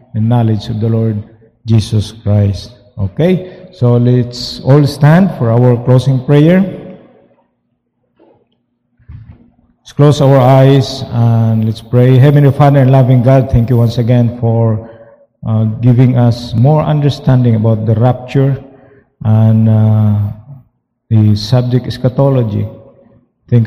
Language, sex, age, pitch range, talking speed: English, male, 50-69, 115-130 Hz, 120 wpm